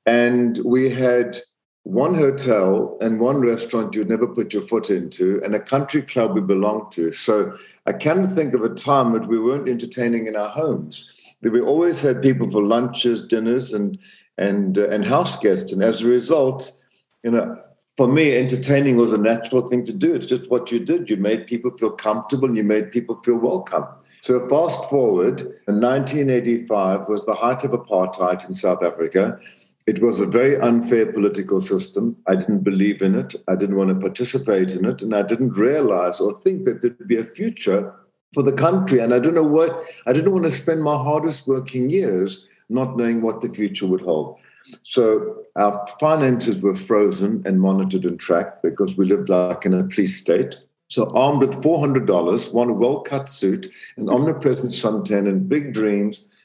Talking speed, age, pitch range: 190 wpm, 50-69, 105-135 Hz